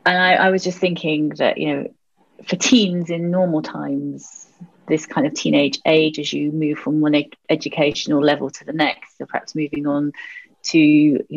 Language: English